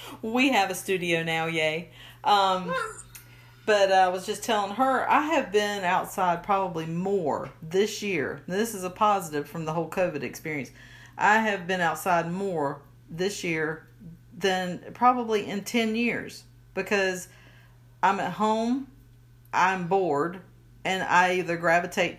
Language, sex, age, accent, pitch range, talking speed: English, female, 50-69, American, 160-200 Hz, 140 wpm